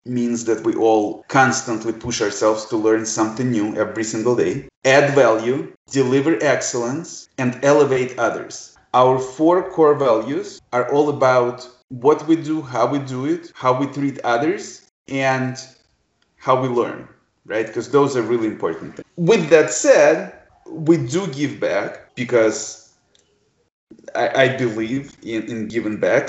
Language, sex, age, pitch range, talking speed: English, male, 20-39, 115-140 Hz, 150 wpm